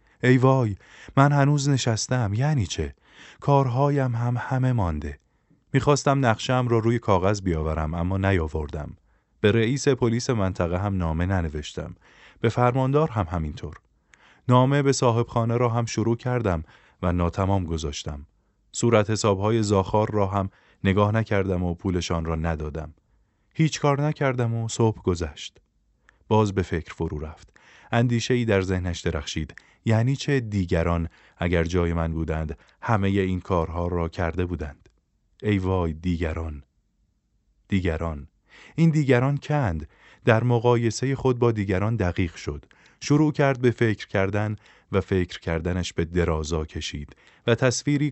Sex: male